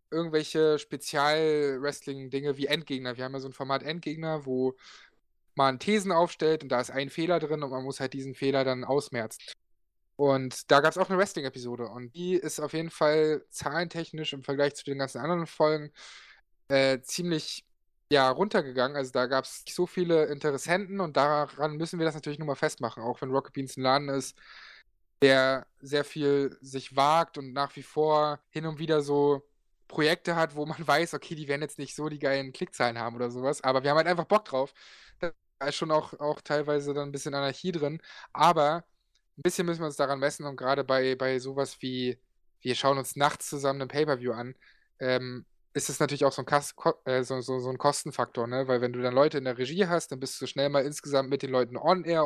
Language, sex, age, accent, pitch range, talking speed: German, male, 20-39, German, 135-155 Hz, 200 wpm